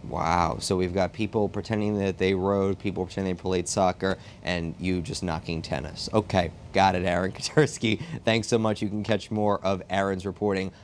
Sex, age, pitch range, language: male, 30-49, 100-135 Hz, English